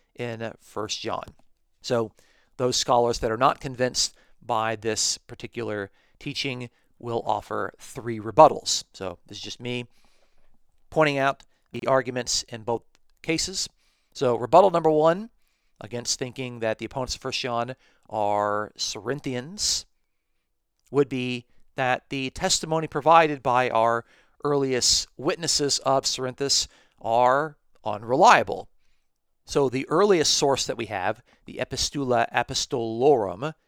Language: English